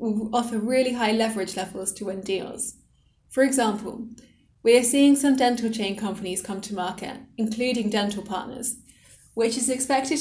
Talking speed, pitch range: 160 wpm, 205-240 Hz